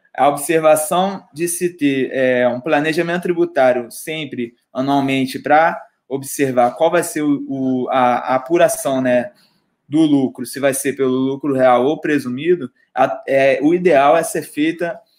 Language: Portuguese